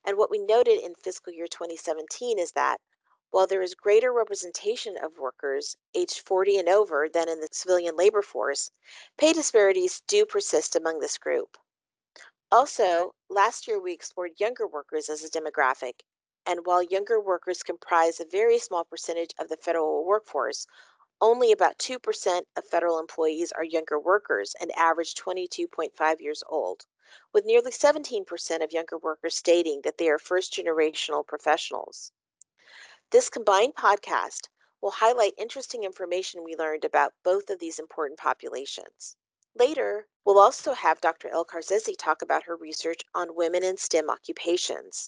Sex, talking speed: female, 150 wpm